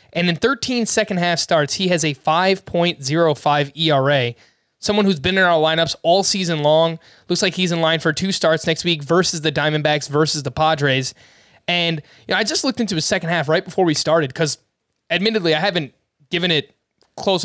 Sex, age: male, 20-39